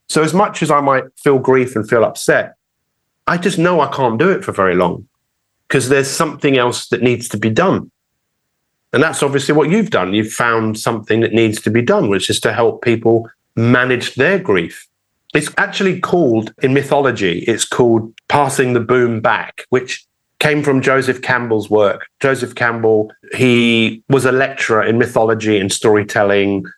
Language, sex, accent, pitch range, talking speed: English, male, British, 110-130 Hz, 175 wpm